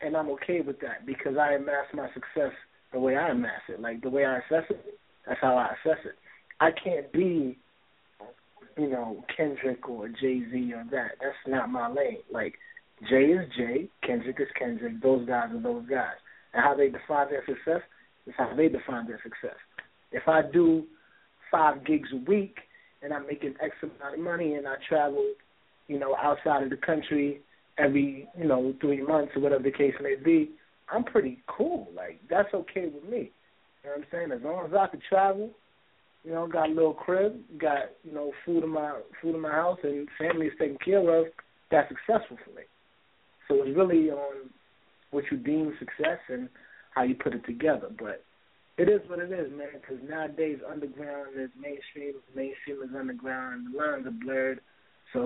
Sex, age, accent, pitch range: male, 30-49, American, 140-185 Hz